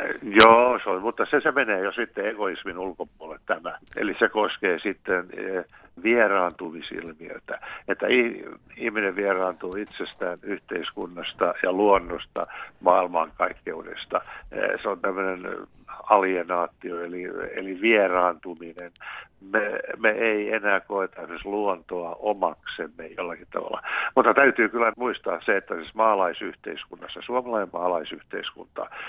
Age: 60-79